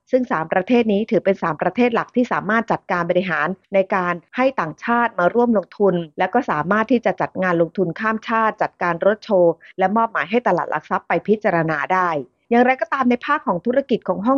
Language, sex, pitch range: Thai, female, 175-225 Hz